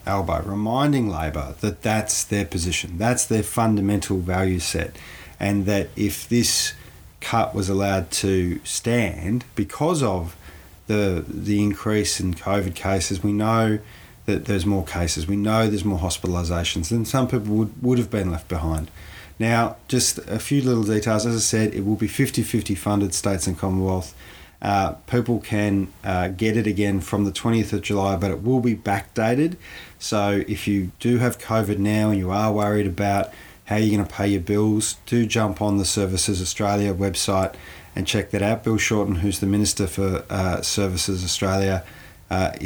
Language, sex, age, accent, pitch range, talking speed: English, male, 40-59, Australian, 95-110 Hz, 175 wpm